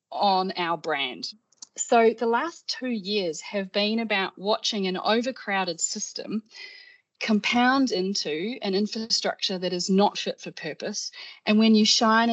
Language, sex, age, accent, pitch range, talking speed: English, female, 30-49, Australian, 175-230 Hz, 140 wpm